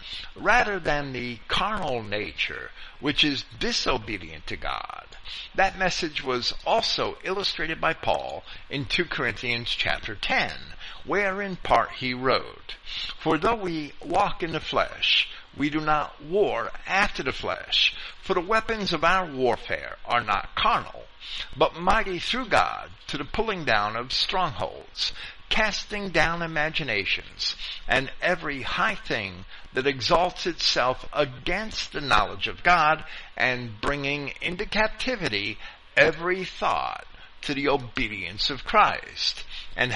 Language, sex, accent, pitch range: English, male, American, 115-180 Hz